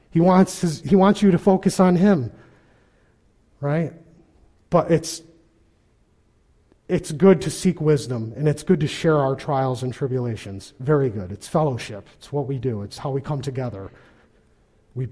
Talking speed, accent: 155 wpm, American